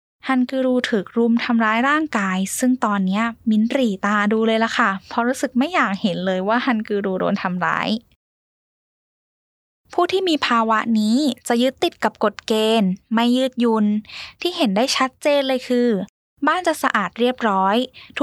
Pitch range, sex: 215-275 Hz, female